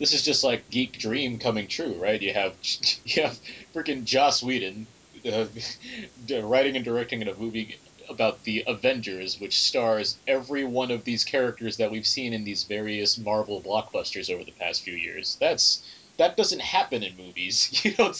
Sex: male